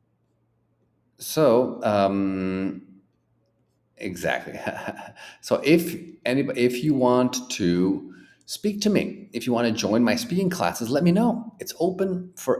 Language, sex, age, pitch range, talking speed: English, male, 40-59, 95-155 Hz, 130 wpm